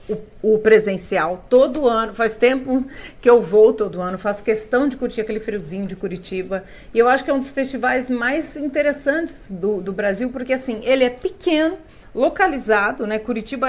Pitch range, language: 195-255 Hz, Portuguese